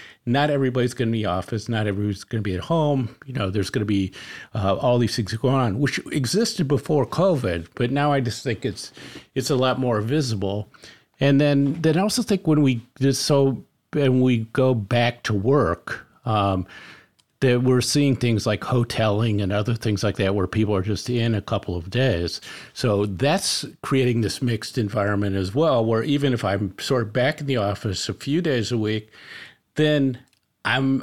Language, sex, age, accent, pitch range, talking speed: English, male, 50-69, American, 105-135 Hz, 200 wpm